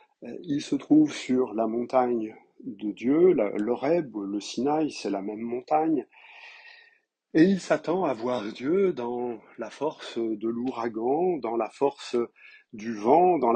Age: 50-69